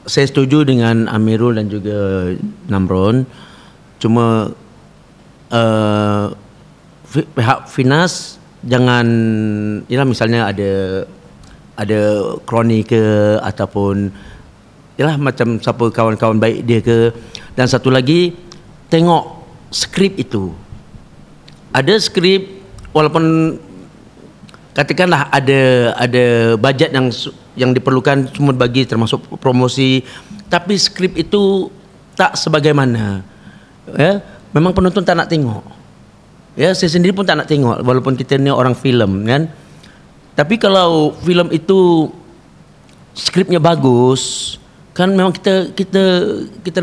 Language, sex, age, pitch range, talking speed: Malay, male, 50-69, 115-175 Hz, 105 wpm